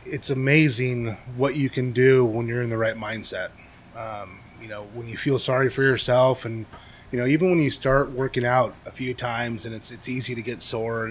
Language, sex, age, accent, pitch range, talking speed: English, male, 20-39, American, 115-140 Hz, 215 wpm